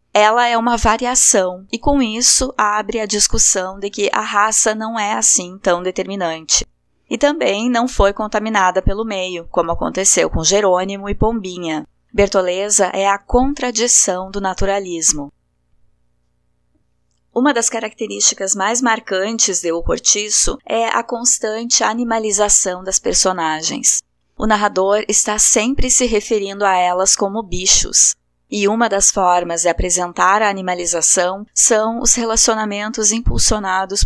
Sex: female